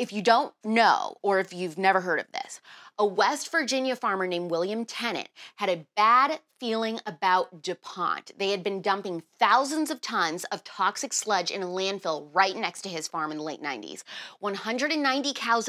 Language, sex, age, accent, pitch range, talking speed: English, female, 20-39, American, 185-235 Hz, 185 wpm